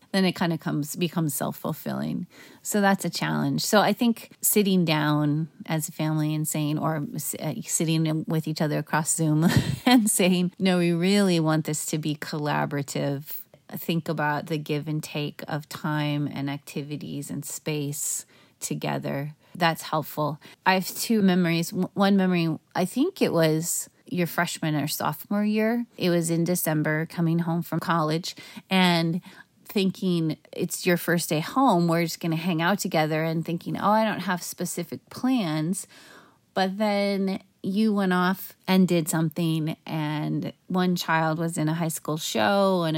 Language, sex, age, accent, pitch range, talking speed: English, female, 30-49, American, 155-195 Hz, 160 wpm